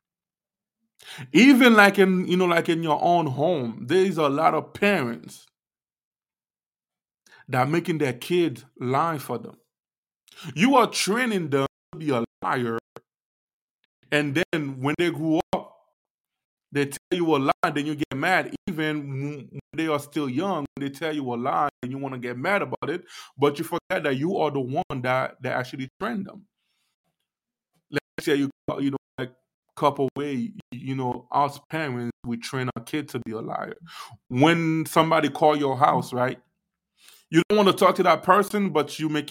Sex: male